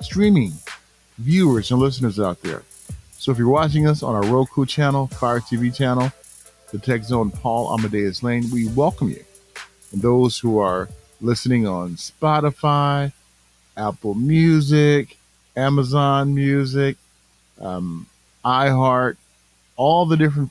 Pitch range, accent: 105-140 Hz, American